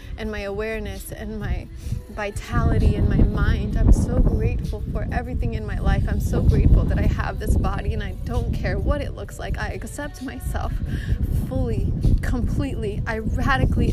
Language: English